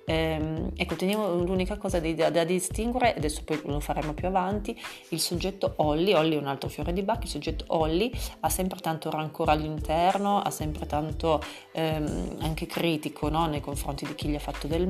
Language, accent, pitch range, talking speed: Italian, native, 150-175 Hz, 195 wpm